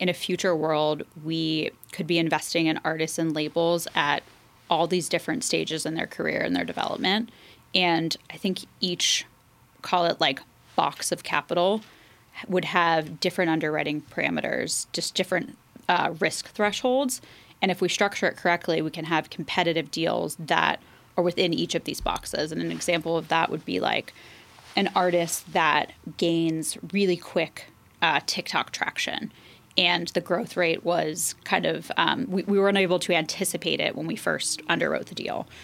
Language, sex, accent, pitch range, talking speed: English, female, American, 165-180 Hz, 170 wpm